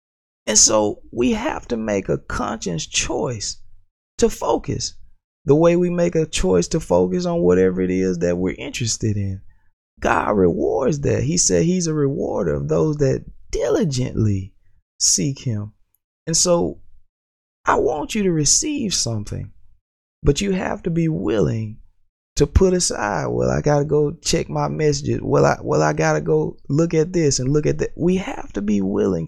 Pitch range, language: 95-155 Hz, English